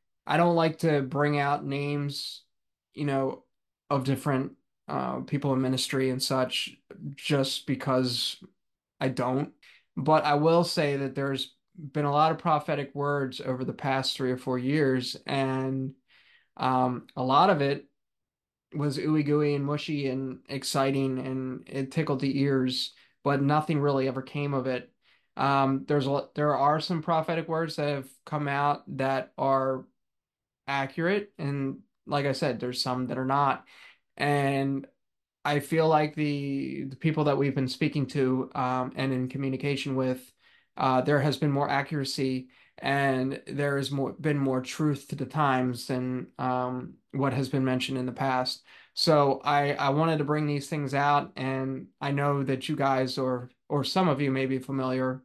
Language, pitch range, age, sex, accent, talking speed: English, 130-145 Hz, 20-39, male, American, 165 wpm